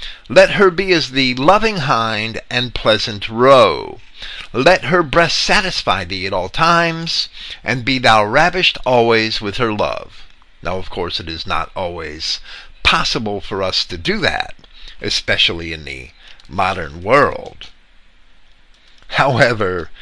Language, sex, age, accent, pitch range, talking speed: English, male, 50-69, American, 100-165 Hz, 135 wpm